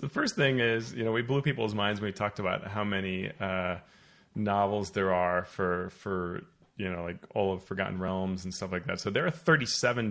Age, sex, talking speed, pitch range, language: 30-49, male, 220 wpm, 95-115 Hz, English